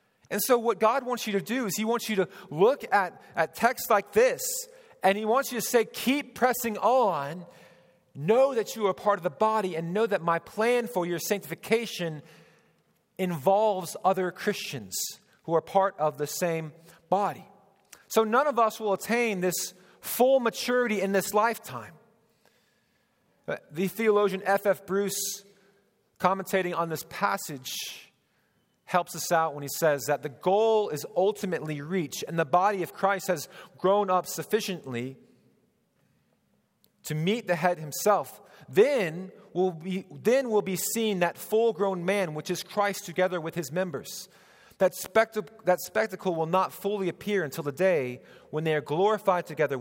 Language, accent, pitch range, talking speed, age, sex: English, American, 165-215 Hz, 165 wpm, 40-59, male